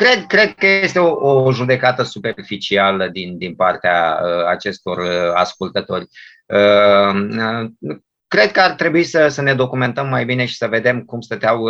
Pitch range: 110-140 Hz